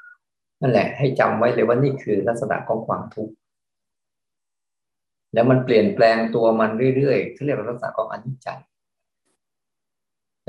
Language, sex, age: Thai, male, 20-39